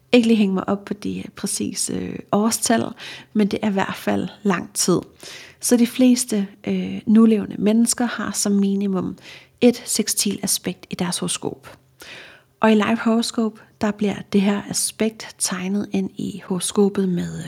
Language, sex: Danish, female